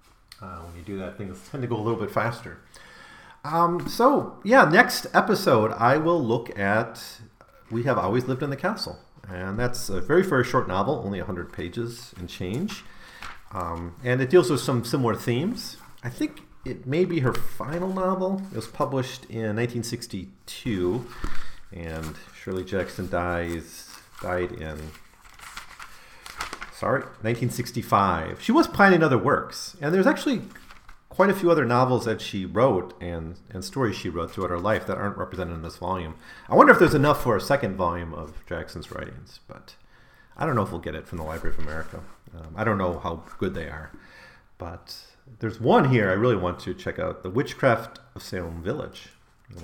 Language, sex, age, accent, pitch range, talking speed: English, male, 40-59, American, 90-125 Hz, 180 wpm